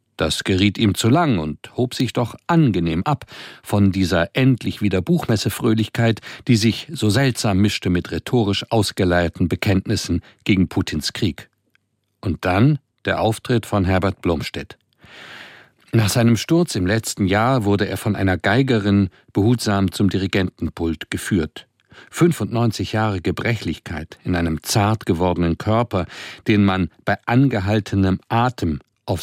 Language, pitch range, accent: German, 95-125 Hz, German